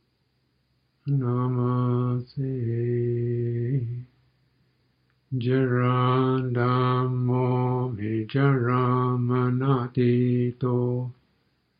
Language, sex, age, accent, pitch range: English, male, 60-79, American, 120-125 Hz